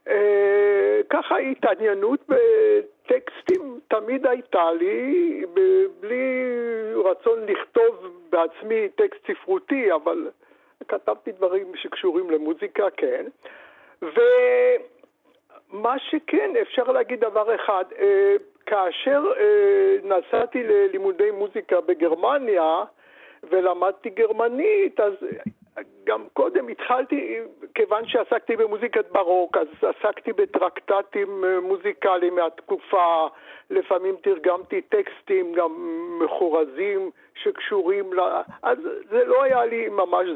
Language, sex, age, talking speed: Hebrew, male, 60-79, 90 wpm